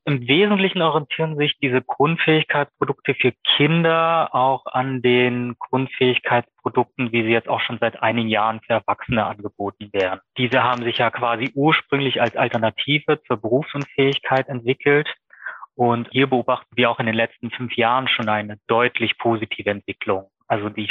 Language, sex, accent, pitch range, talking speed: German, male, German, 115-140 Hz, 150 wpm